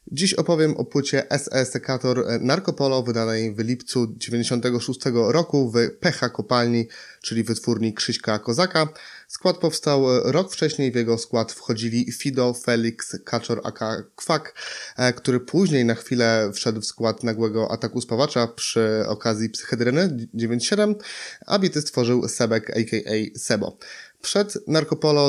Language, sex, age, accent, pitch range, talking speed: Polish, male, 20-39, native, 115-140 Hz, 130 wpm